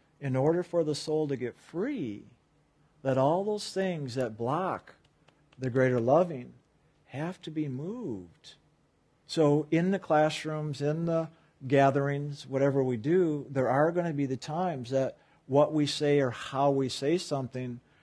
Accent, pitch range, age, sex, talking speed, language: American, 130-155 Hz, 50-69, male, 155 wpm, English